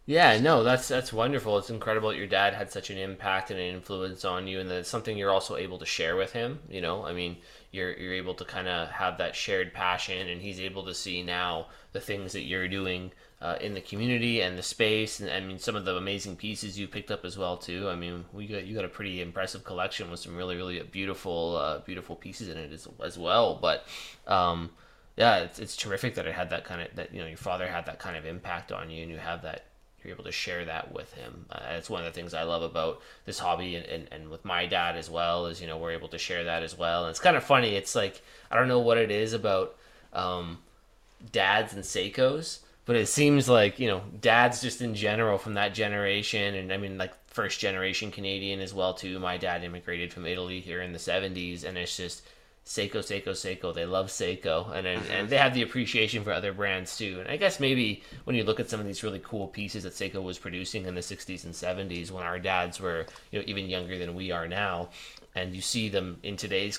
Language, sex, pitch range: English, male, 90-105 Hz